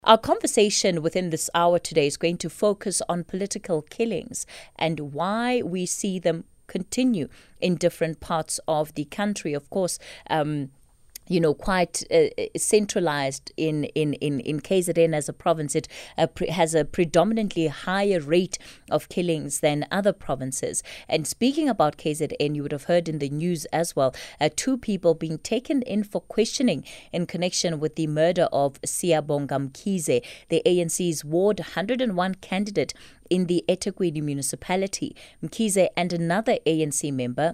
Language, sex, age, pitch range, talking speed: English, female, 30-49, 155-195 Hz, 155 wpm